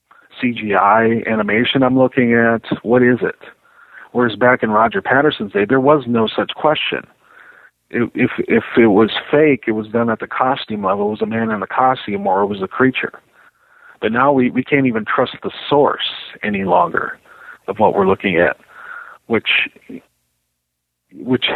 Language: English